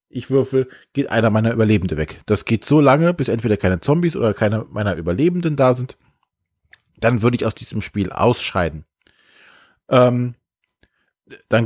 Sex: male